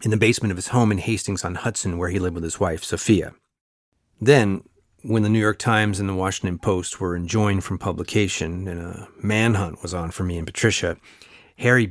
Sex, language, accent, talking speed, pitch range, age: male, English, American, 195 wpm, 95-115 Hz, 40-59